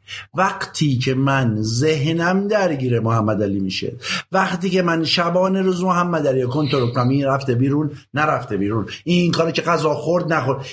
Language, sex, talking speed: Persian, male, 145 wpm